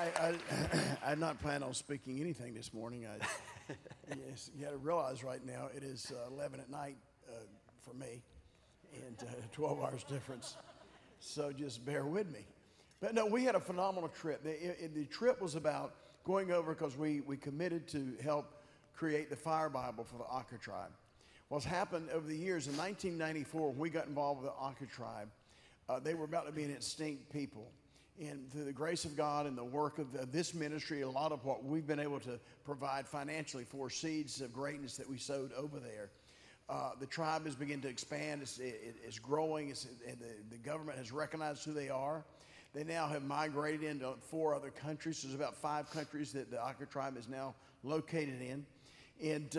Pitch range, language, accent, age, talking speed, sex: 135-155 Hz, English, American, 50-69, 200 wpm, male